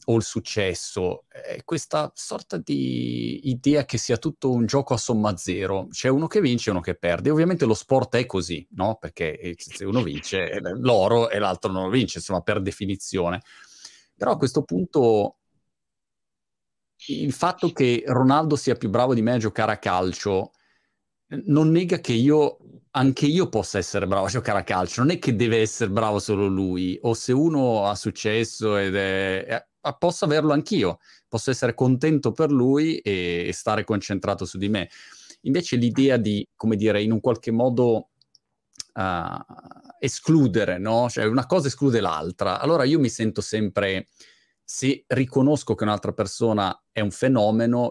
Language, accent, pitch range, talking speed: Italian, native, 95-130 Hz, 165 wpm